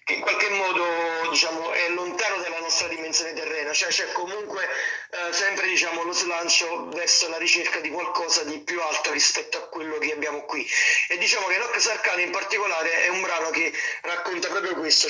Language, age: Italian, 30-49